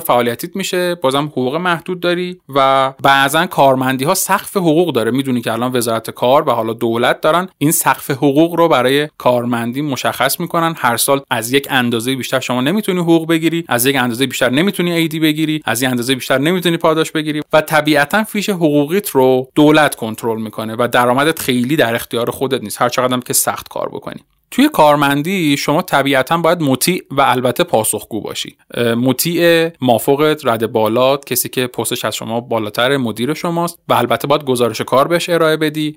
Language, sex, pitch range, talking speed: Persian, male, 125-170 Hz, 175 wpm